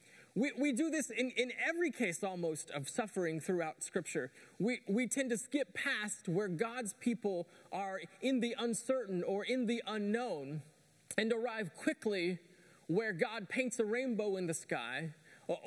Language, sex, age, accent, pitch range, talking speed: English, male, 30-49, American, 170-245 Hz, 160 wpm